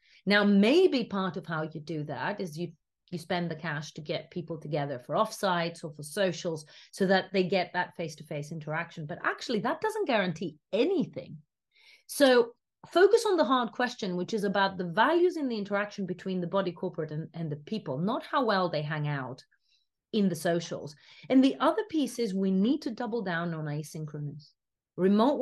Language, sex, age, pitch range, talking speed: English, female, 30-49, 165-225 Hz, 190 wpm